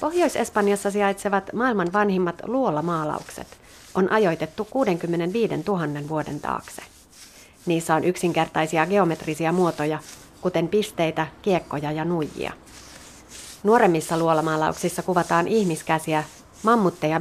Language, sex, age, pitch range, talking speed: Finnish, female, 30-49, 155-215 Hz, 90 wpm